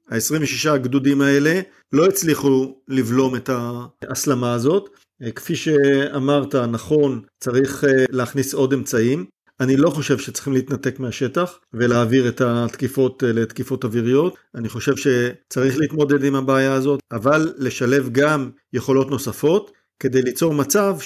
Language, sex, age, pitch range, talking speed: Hebrew, male, 50-69, 125-145 Hz, 120 wpm